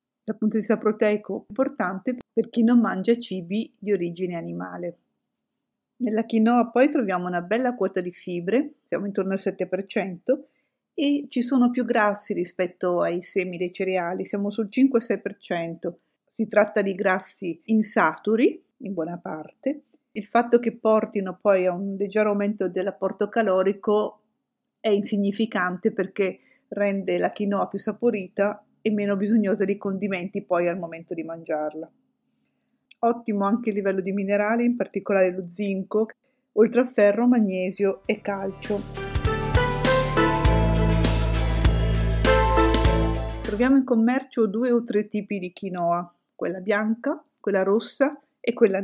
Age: 50-69